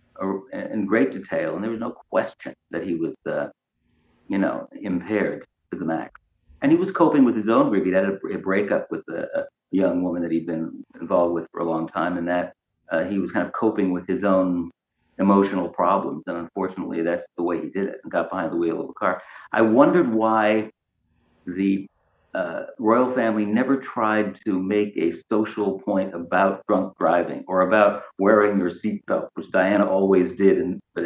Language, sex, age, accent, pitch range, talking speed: English, male, 50-69, American, 90-105 Hz, 195 wpm